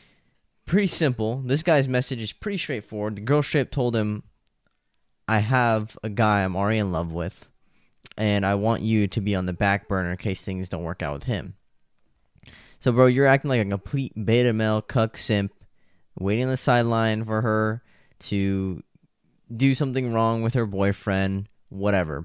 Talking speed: 175 wpm